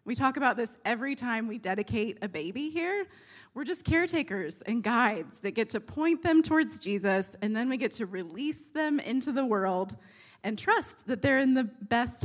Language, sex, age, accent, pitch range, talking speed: English, female, 20-39, American, 200-265 Hz, 195 wpm